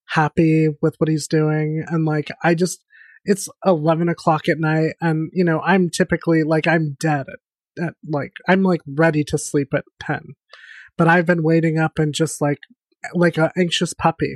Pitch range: 155-185 Hz